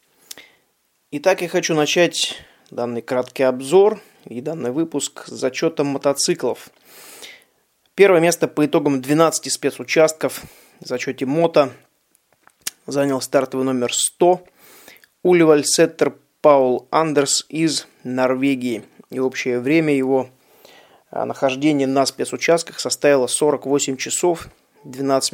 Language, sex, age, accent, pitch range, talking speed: Russian, male, 20-39, native, 130-155 Hz, 100 wpm